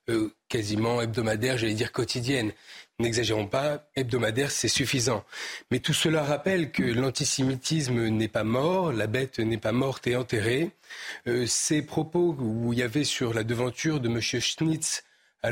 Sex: male